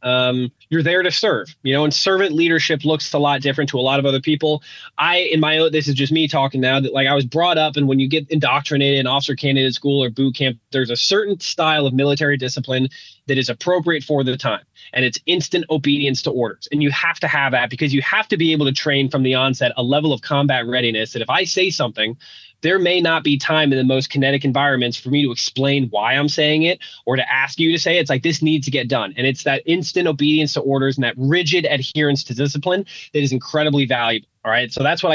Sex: male